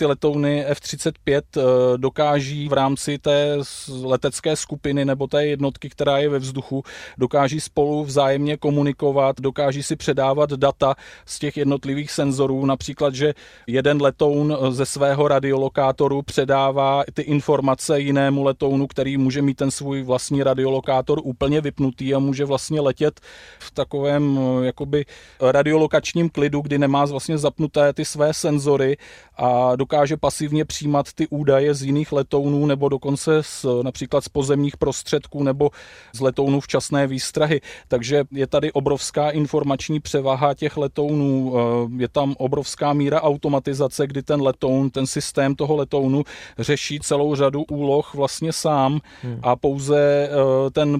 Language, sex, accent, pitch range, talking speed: Czech, male, native, 135-145 Hz, 130 wpm